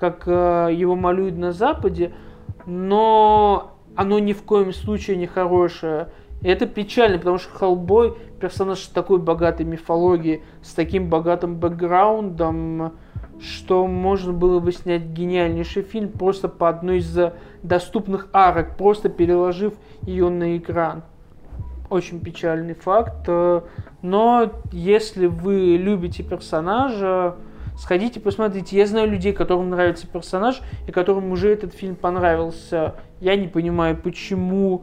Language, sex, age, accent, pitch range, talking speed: Russian, male, 20-39, native, 170-195 Hz, 125 wpm